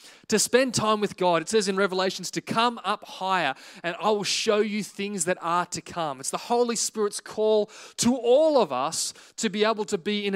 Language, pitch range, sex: English, 185-230 Hz, male